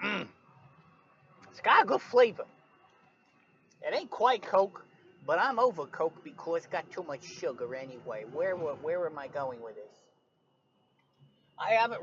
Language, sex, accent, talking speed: English, male, American, 160 wpm